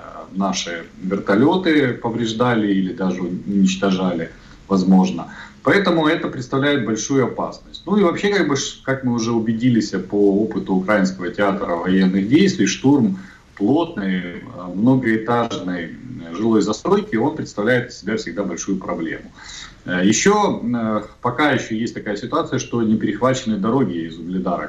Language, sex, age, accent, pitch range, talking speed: Russian, male, 40-59, native, 95-130 Hz, 120 wpm